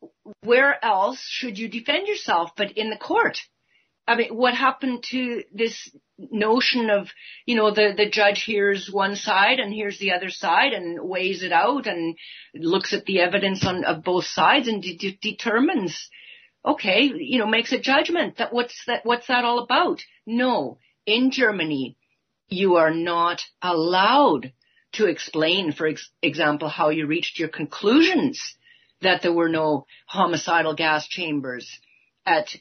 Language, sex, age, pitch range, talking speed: English, female, 50-69, 175-245 Hz, 160 wpm